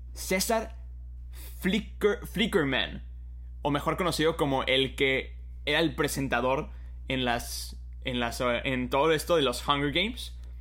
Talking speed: 130 wpm